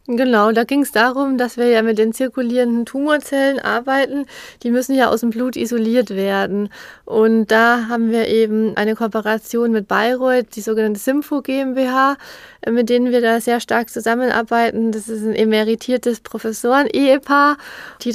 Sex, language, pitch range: female, German, 220-250 Hz